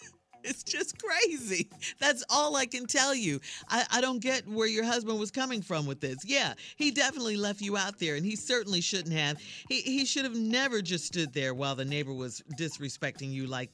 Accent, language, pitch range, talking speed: American, English, 175-245 Hz, 210 wpm